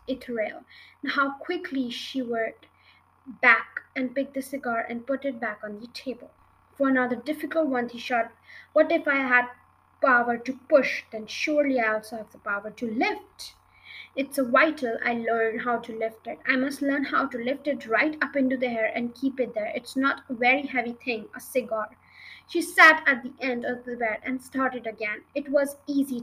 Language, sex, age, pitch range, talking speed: English, female, 20-39, 240-280 Hz, 195 wpm